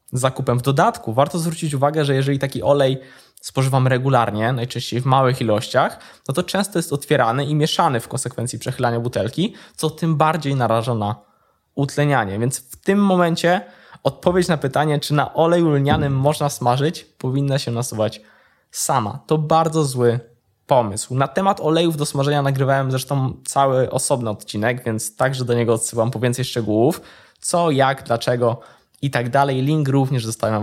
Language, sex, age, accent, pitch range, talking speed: Polish, male, 20-39, native, 125-160 Hz, 160 wpm